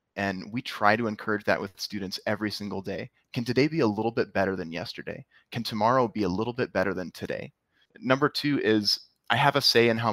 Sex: male